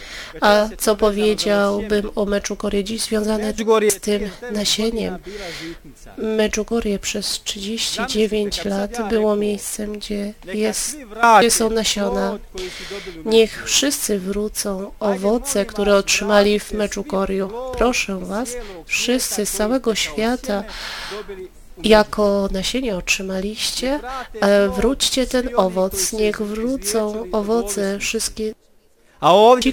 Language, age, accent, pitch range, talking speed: Polish, 30-49, native, 200-225 Hz, 95 wpm